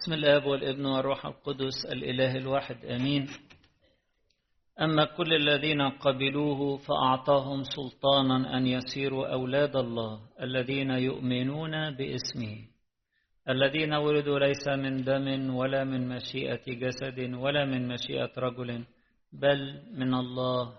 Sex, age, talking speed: male, 50-69, 105 wpm